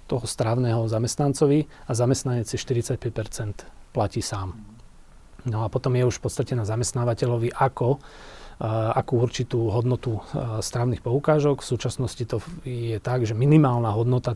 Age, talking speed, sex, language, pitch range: 30-49, 140 wpm, male, Slovak, 110-125 Hz